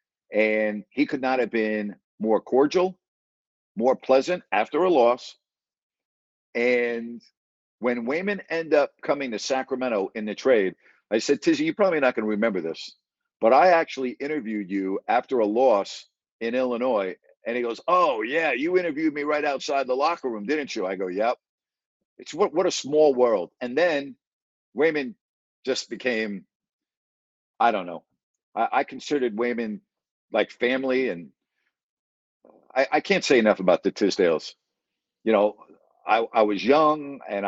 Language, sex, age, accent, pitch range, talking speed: English, male, 50-69, American, 105-145 Hz, 155 wpm